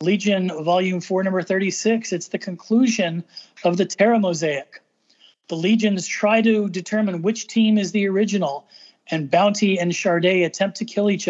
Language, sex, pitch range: English, male, 175-215 Hz